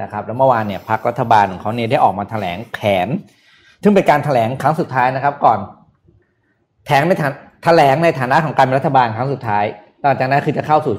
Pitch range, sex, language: 110-145 Hz, male, Thai